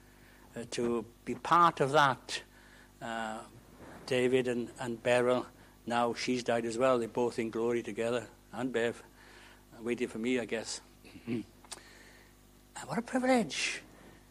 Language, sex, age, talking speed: English, male, 60-79, 145 wpm